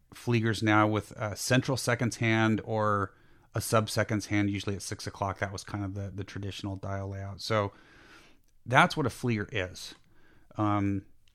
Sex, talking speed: male, 170 wpm